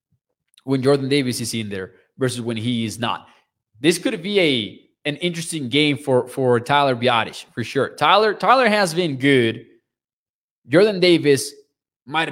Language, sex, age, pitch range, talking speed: English, male, 20-39, 130-175 Hz, 155 wpm